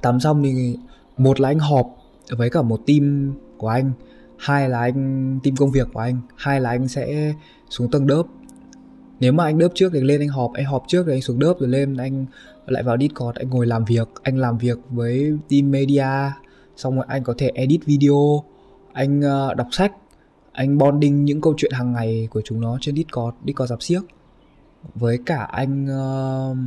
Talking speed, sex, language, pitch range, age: 200 wpm, male, Vietnamese, 115-140 Hz, 20-39